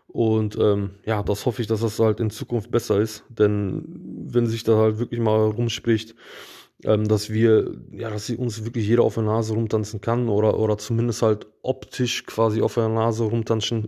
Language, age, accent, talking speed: German, 20-39, German, 195 wpm